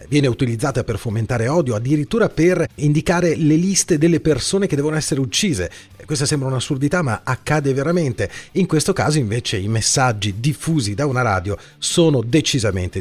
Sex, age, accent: male, 40-59, native